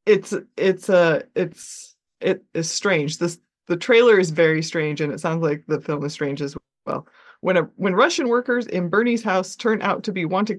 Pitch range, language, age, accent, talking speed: 165-220 Hz, English, 30-49, American, 210 wpm